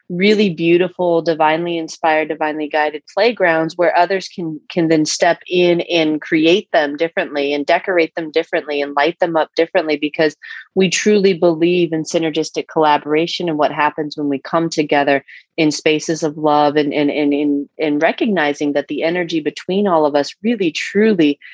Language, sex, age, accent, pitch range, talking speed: English, female, 30-49, American, 155-185 Hz, 165 wpm